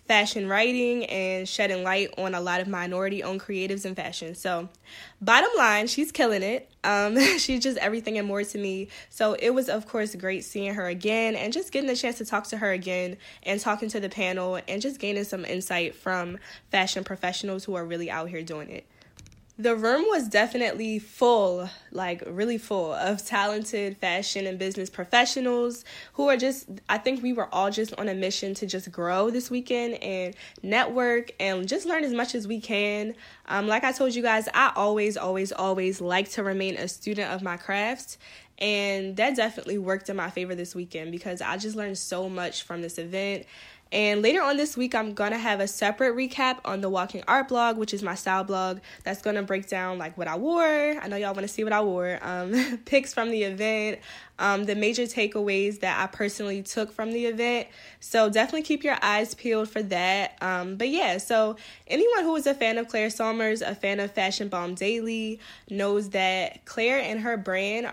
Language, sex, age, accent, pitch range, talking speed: English, female, 10-29, American, 190-230 Hz, 205 wpm